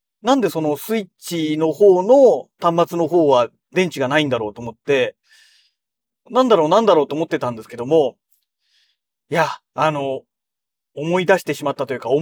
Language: Japanese